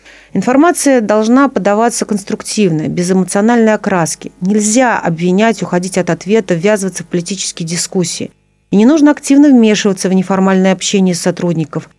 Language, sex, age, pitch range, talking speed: Russian, female, 40-59, 180-225 Hz, 130 wpm